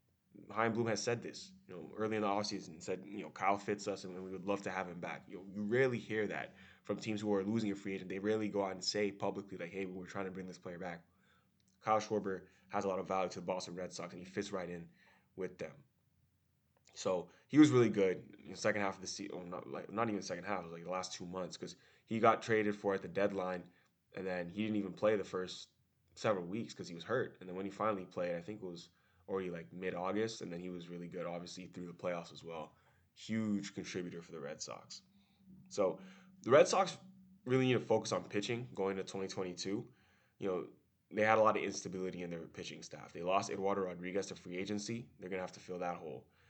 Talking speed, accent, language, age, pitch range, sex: 250 wpm, American, English, 20-39, 90-105 Hz, male